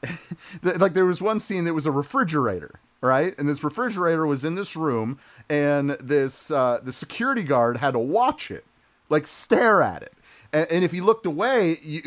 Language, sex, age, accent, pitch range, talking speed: English, male, 30-49, American, 125-175 Hz, 190 wpm